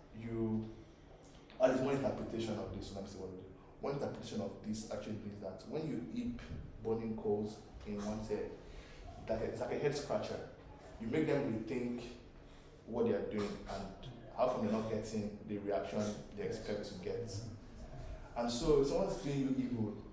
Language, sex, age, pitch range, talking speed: English, male, 20-39, 105-130 Hz, 175 wpm